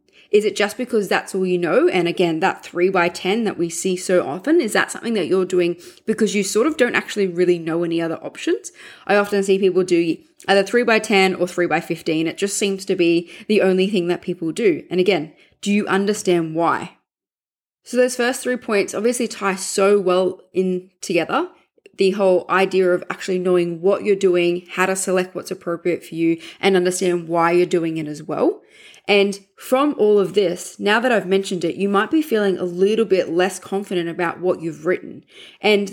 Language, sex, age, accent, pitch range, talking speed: English, female, 20-39, Australian, 180-220 Hz, 210 wpm